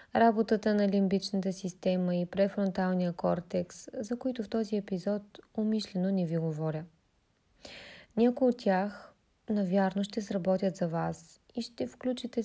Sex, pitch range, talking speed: female, 180-225 Hz, 130 wpm